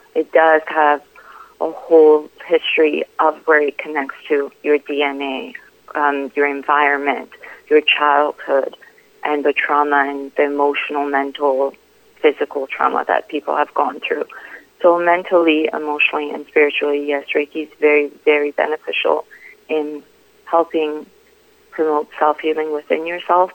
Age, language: 30-49, English